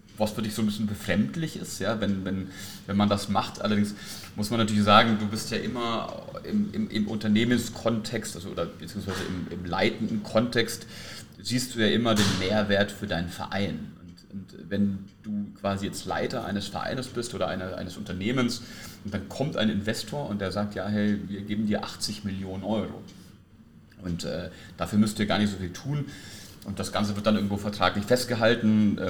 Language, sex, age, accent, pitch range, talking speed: German, male, 30-49, German, 100-110 Hz, 190 wpm